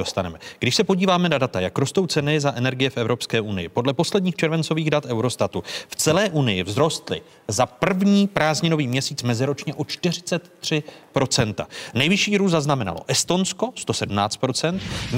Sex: male